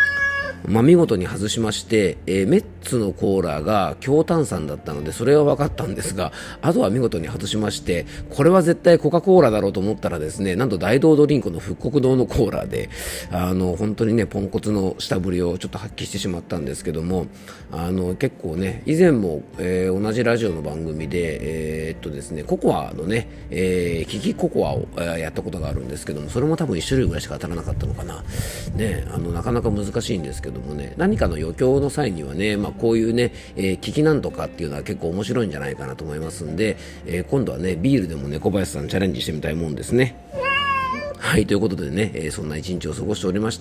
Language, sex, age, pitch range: Japanese, male, 40-59, 85-115 Hz